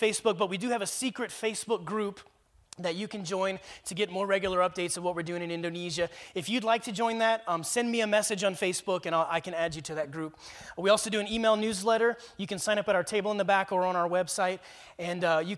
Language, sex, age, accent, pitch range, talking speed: English, male, 30-49, American, 170-210 Hz, 260 wpm